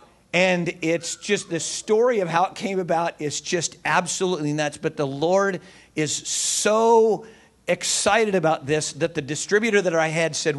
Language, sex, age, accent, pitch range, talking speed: English, male, 50-69, American, 150-195 Hz, 165 wpm